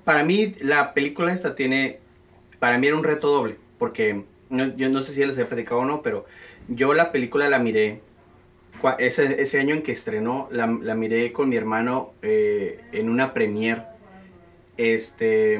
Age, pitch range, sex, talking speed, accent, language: 30-49, 115-145 Hz, male, 180 wpm, Mexican, English